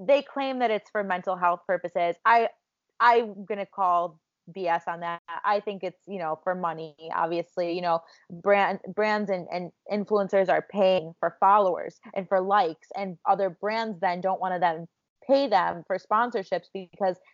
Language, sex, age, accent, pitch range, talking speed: English, female, 20-39, American, 185-245 Hz, 175 wpm